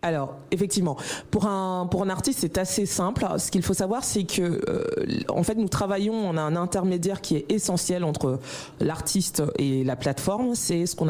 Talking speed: 195 wpm